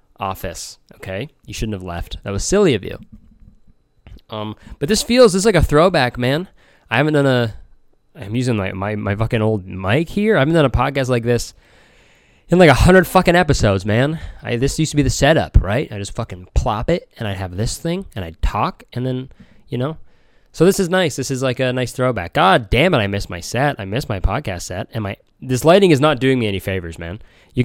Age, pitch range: 20-39, 95-130 Hz